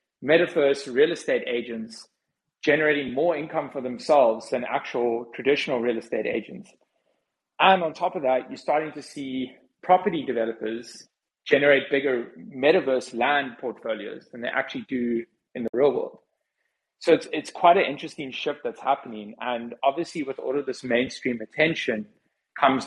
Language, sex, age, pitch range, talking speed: English, male, 30-49, 120-150 Hz, 150 wpm